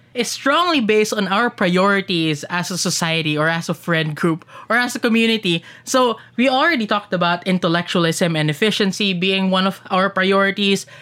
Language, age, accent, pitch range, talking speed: English, 20-39, Filipino, 175-225 Hz, 170 wpm